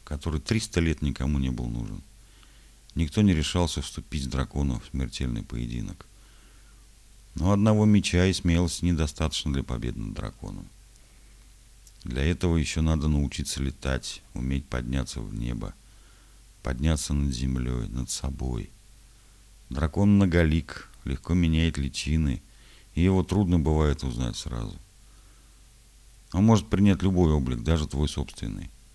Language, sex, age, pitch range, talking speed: Russian, male, 50-69, 70-95 Hz, 125 wpm